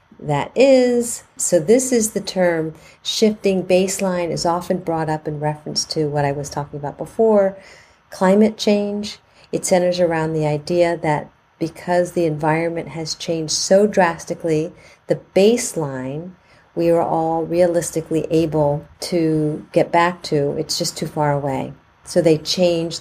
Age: 40-59